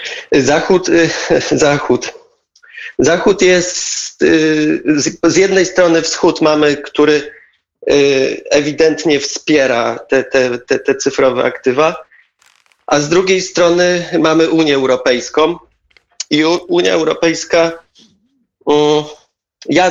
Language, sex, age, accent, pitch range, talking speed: Polish, male, 30-49, native, 140-170 Hz, 85 wpm